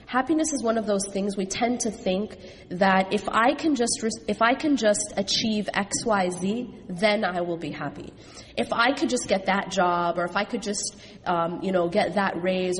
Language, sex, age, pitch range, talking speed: English, female, 30-49, 180-230 Hz, 215 wpm